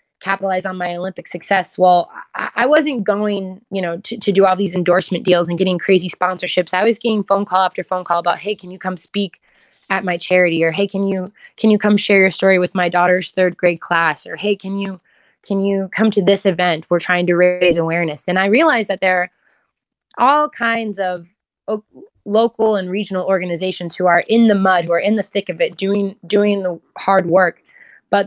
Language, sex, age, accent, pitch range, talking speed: English, female, 20-39, American, 180-210 Hz, 215 wpm